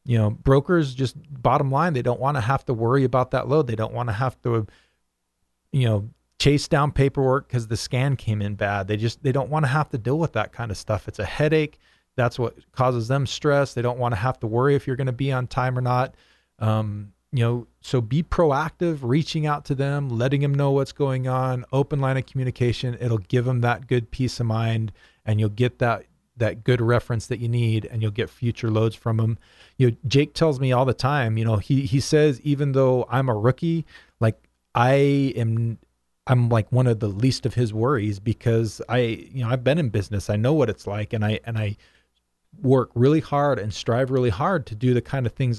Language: English